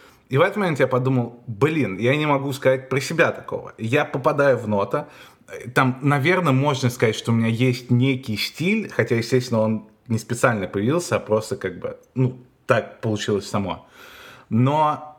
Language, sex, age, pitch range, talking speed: Russian, male, 20-39, 115-140 Hz, 170 wpm